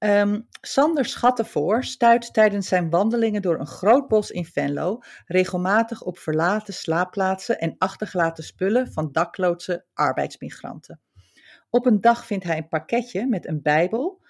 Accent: Dutch